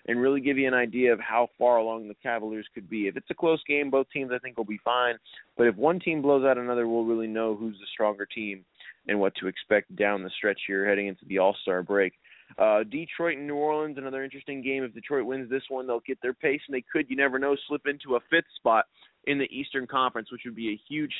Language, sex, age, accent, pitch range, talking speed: English, male, 20-39, American, 110-125 Hz, 255 wpm